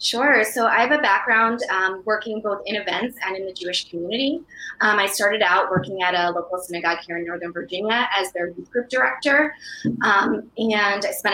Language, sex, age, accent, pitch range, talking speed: English, female, 20-39, American, 170-230 Hz, 200 wpm